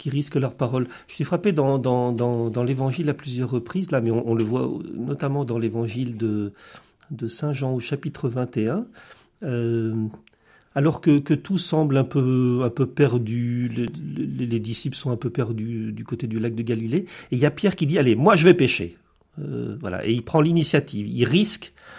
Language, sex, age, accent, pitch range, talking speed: French, male, 40-59, French, 115-150 Hz, 205 wpm